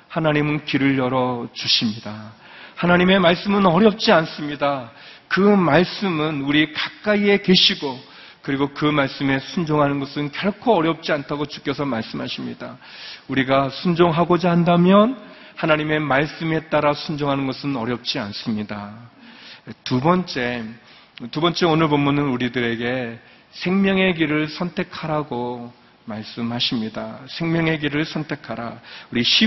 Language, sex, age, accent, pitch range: Korean, male, 40-59, native, 125-160 Hz